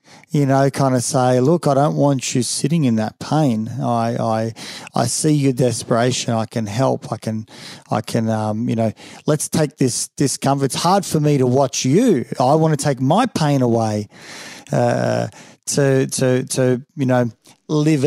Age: 40-59